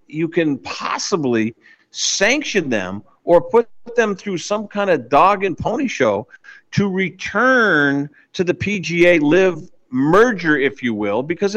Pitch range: 140-195 Hz